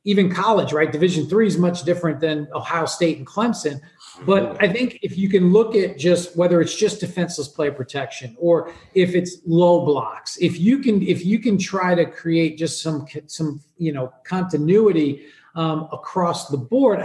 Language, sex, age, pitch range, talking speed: English, male, 40-59, 155-195 Hz, 185 wpm